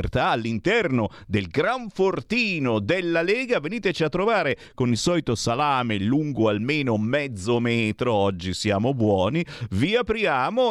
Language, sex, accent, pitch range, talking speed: Italian, male, native, 115-170 Hz, 125 wpm